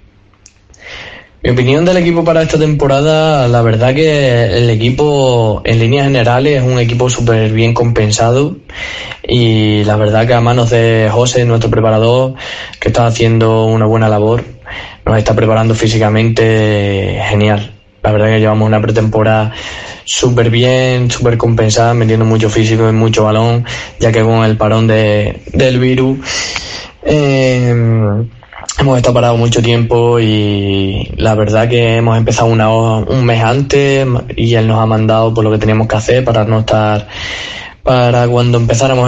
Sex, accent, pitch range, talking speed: male, Spanish, 110-120 Hz, 150 wpm